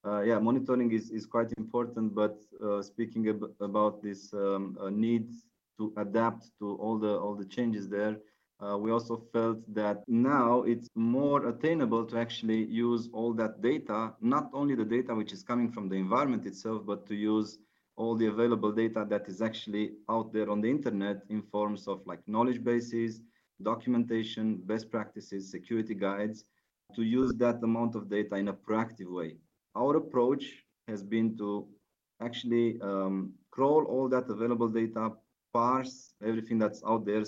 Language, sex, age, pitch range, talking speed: English, male, 20-39, 105-115 Hz, 165 wpm